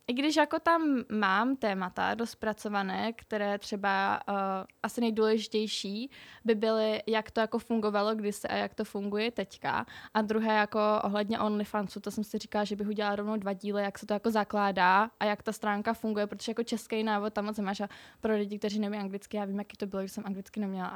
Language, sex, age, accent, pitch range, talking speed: Czech, female, 10-29, native, 215-255 Hz, 200 wpm